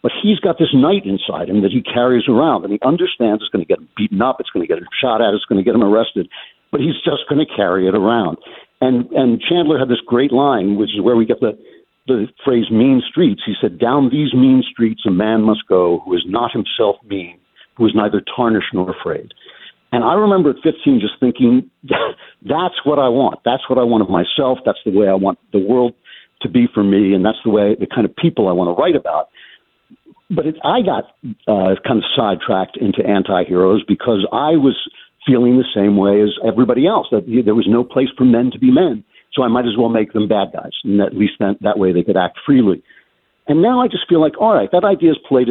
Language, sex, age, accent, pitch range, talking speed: English, male, 60-79, American, 100-135 Hz, 240 wpm